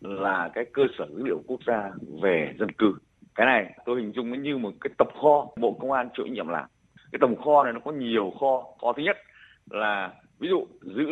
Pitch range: 120-195 Hz